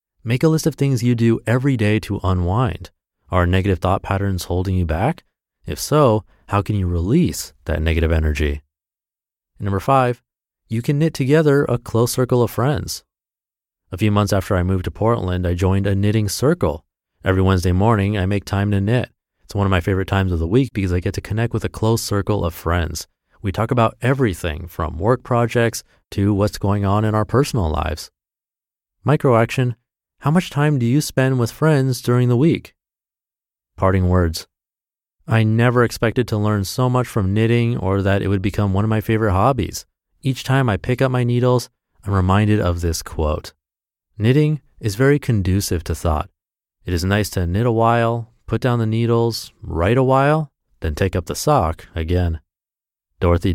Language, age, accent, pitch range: English, 30-49, American, 90-120 Hz